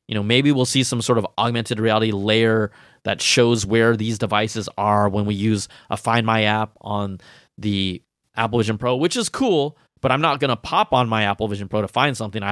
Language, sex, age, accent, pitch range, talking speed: English, male, 20-39, American, 105-135 Hz, 225 wpm